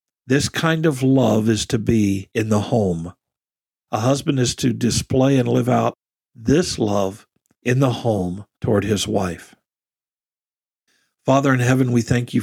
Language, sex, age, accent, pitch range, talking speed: English, male, 50-69, American, 110-130 Hz, 155 wpm